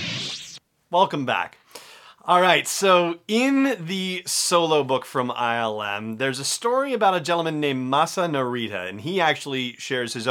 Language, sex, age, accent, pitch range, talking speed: English, male, 30-49, American, 120-170 Hz, 145 wpm